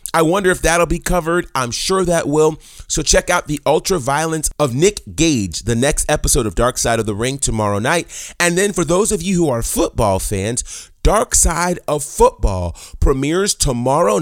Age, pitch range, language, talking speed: 30-49, 115-165 Hz, English, 195 wpm